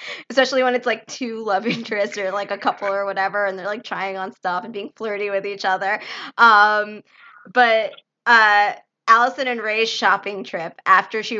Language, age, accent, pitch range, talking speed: English, 20-39, American, 190-225 Hz, 185 wpm